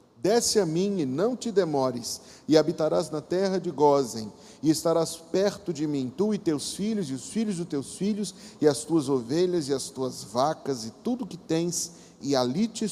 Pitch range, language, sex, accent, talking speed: 135-185 Hz, Portuguese, male, Brazilian, 200 wpm